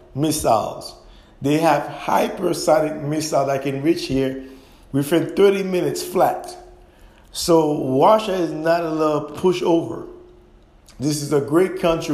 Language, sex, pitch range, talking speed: English, male, 135-165 Hz, 135 wpm